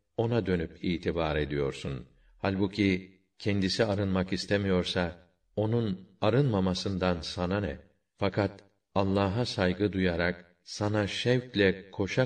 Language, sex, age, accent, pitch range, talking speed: Turkish, male, 50-69, native, 90-105 Hz, 95 wpm